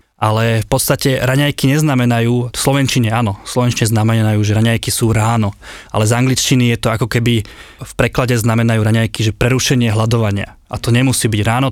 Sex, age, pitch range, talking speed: male, 20-39, 110-130 Hz, 170 wpm